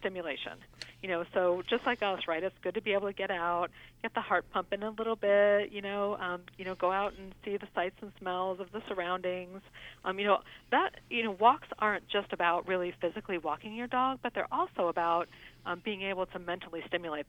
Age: 40-59